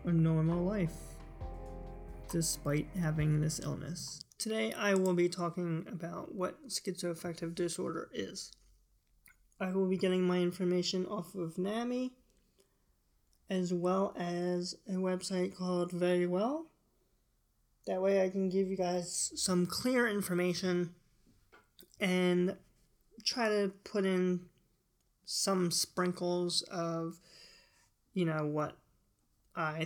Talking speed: 110 wpm